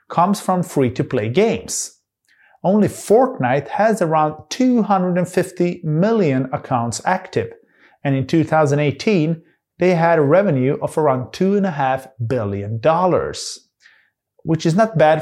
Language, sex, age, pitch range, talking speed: English, male, 30-49, 130-170 Hz, 110 wpm